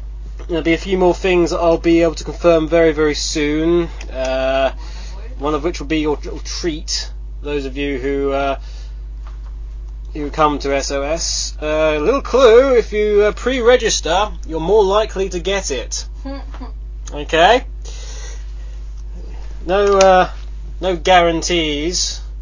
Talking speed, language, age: 140 wpm, English, 20-39